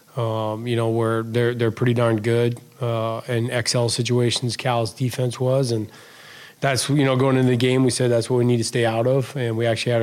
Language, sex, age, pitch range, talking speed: English, male, 20-39, 115-125 Hz, 225 wpm